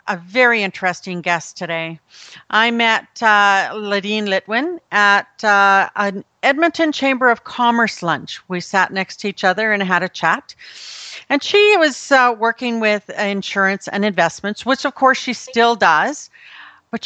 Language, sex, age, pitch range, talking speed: English, female, 40-59, 190-245 Hz, 155 wpm